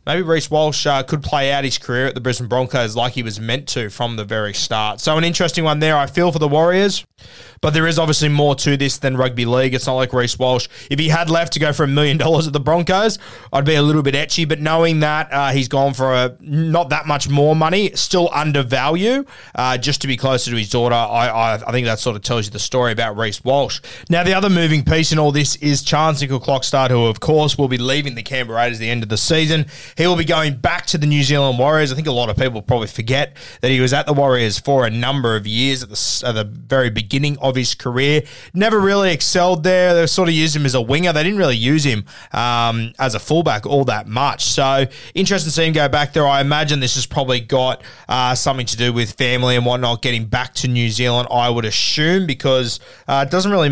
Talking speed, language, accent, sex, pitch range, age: 250 wpm, English, Australian, male, 120-155 Hz, 20-39